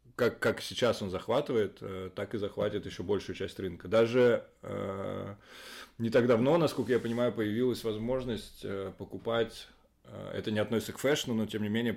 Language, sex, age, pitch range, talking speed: Russian, male, 20-39, 100-120 Hz, 165 wpm